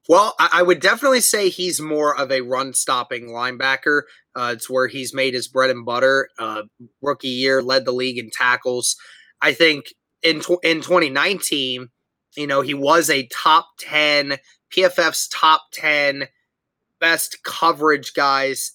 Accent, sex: American, male